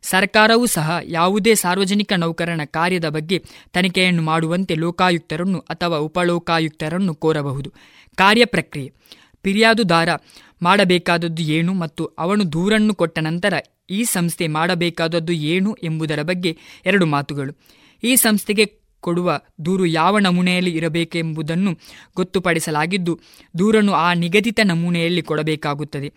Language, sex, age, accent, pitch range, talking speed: Kannada, female, 20-39, native, 165-195 Hz, 100 wpm